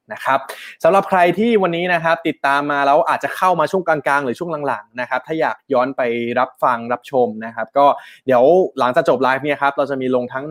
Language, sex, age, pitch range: Thai, male, 20-39, 120-155 Hz